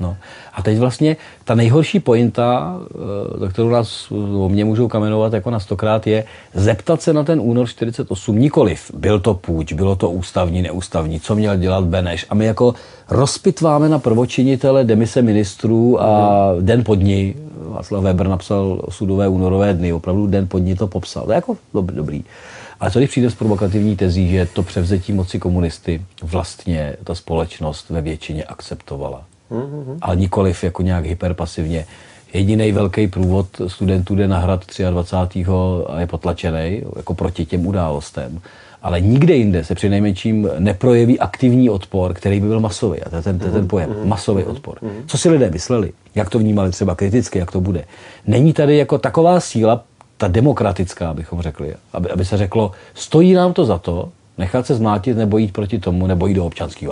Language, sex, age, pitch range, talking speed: Czech, male, 40-59, 90-115 Hz, 175 wpm